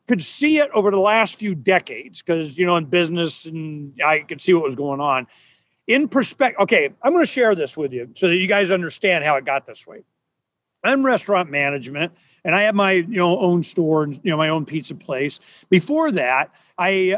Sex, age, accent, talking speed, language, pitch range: male, 40-59, American, 215 wpm, English, 170-230 Hz